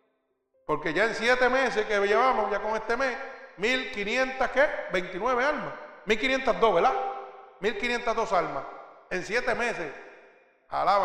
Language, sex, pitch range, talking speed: Spanish, male, 175-260 Hz, 150 wpm